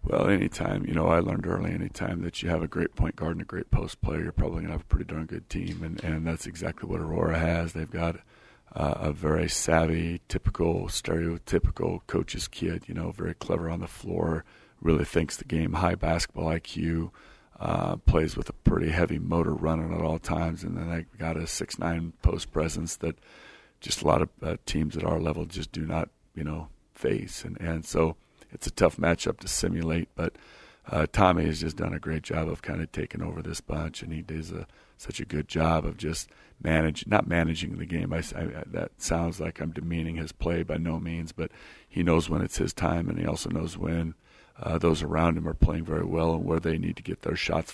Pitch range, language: 80-85 Hz, English